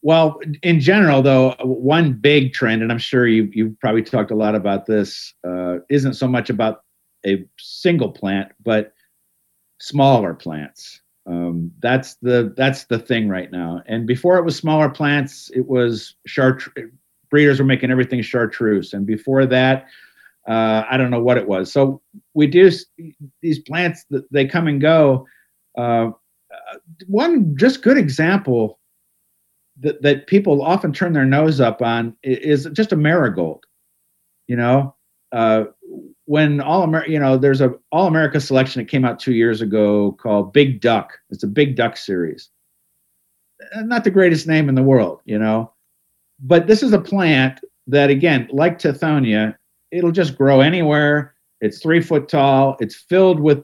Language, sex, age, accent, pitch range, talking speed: English, male, 50-69, American, 115-160 Hz, 160 wpm